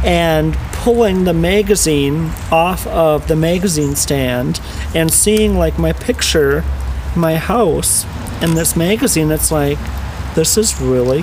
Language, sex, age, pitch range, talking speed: English, male, 40-59, 130-155 Hz, 130 wpm